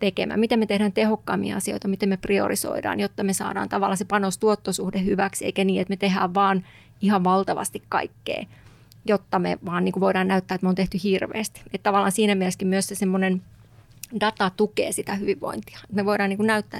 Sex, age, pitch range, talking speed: female, 30-49, 190-205 Hz, 185 wpm